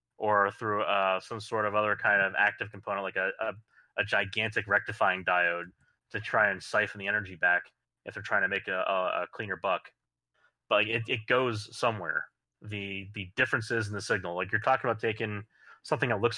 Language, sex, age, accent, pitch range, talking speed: English, male, 30-49, American, 100-115 Hz, 195 wpm